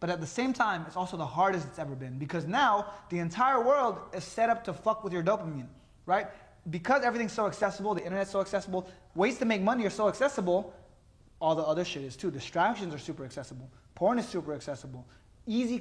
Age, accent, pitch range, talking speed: 20-39, American, 155-210 Hz, 215 wpm